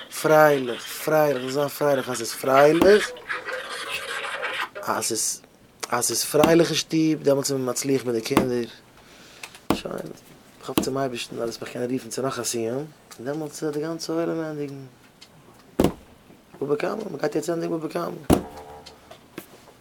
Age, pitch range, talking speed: 20-39, 125-155 Hz, 115 wpm